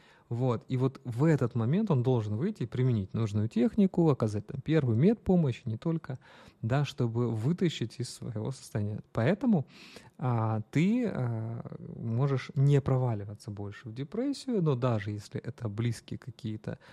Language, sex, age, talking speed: Russian, male, 30-49, 145 wpm